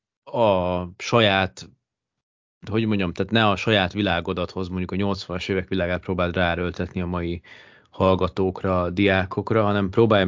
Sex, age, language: male, 30-49, Hungarian